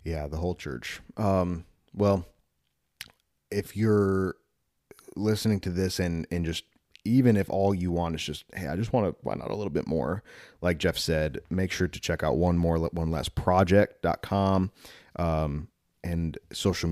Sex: male